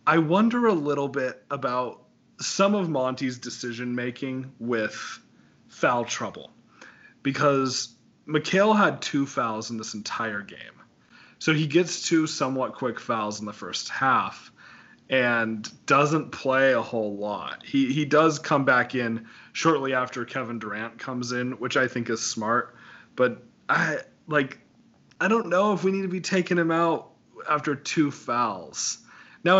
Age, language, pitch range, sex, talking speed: 30-49, English, 120-155 Hz, male, 150 wpm